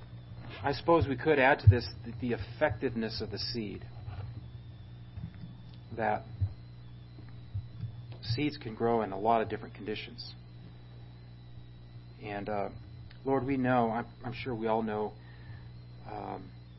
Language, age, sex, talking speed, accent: English, 40-59, male, 120 wpm, American